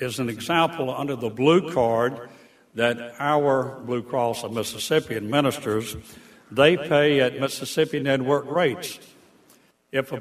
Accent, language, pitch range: American, English, 115-135 Hz